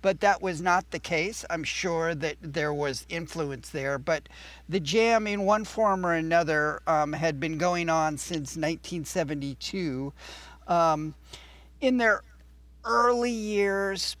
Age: 50-69